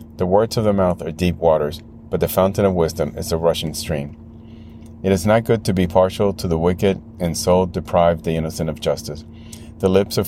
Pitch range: 80-100 Hz